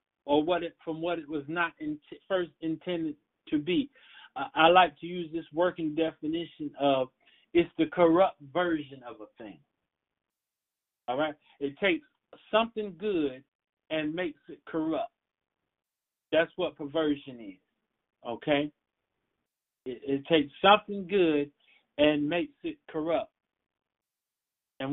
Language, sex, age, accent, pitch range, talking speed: English, male, 40-59, American, 155-205 Hz, 130 wpm